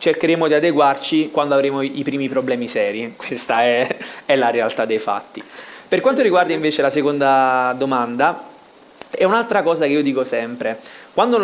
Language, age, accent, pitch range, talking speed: Italian, 20-39, native, 125-160 Hz, 165 wpm